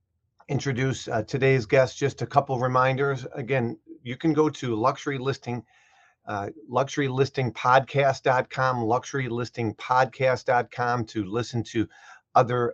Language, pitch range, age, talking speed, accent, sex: English, 115-135 Hz, 40-59, 95 wpm, American, male